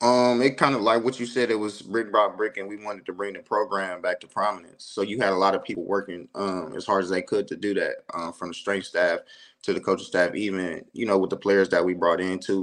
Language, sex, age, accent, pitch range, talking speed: English, male, 20-39, American, 95-110 Hz, 280 wpm